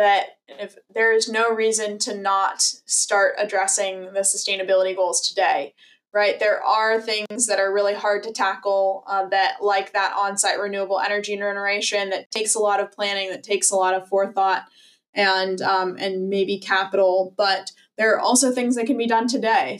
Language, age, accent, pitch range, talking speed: English, 20-39, American, 190-210 Hz, 180 wpm